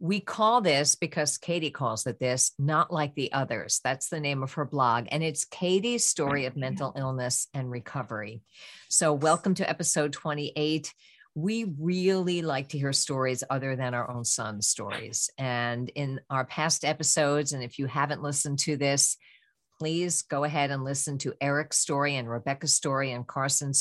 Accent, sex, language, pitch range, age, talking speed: American, female, English, 135-165 Hz, 50-69, 175 wpm